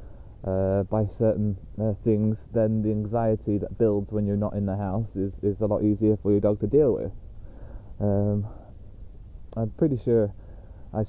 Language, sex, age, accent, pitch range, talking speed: English, male, 20-39, British, 100-115 Hz, 175 wpm